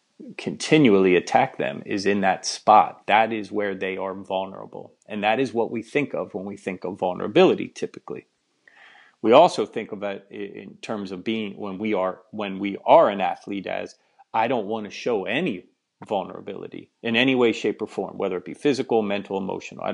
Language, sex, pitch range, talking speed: English, male, 100-125 Hz, 185 wpm